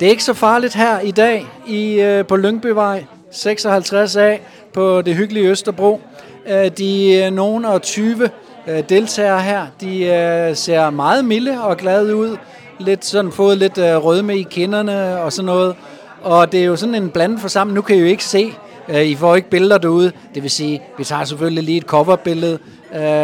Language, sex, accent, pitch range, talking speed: Danish, male, native, 155-200 Hz, 170 wpm